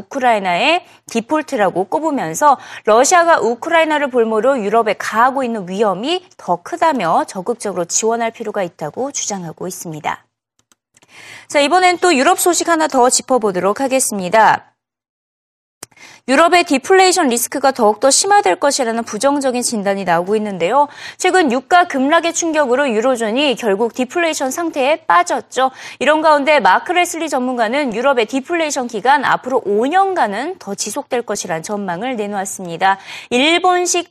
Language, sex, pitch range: Korean, female, 220-330 Hz